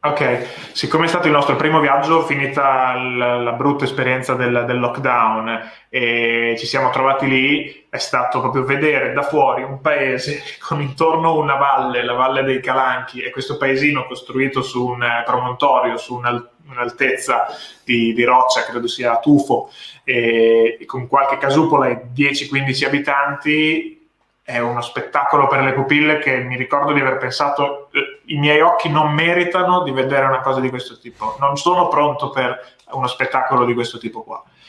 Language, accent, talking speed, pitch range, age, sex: Italian, native, 165 wpm, 120-145 Hz, 20-39, male